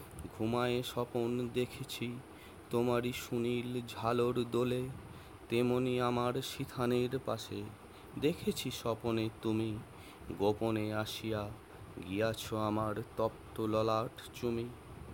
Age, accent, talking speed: 30-49, native, 40 wpm